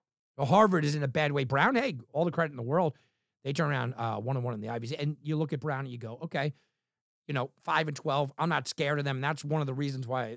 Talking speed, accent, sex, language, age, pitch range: 285 wpm, American, male, English, 50-69, 125-195 Hz